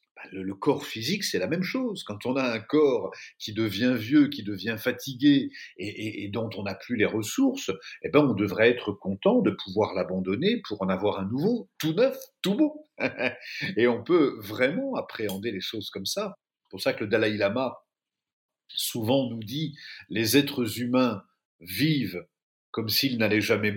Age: 50-69